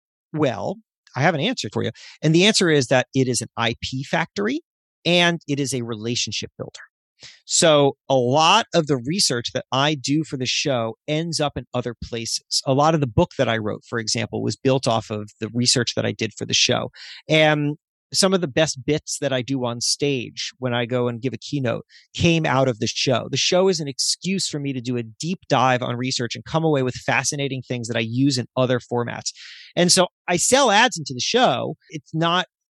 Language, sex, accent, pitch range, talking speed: English, male, American, 120-160 Hz, 220 wpm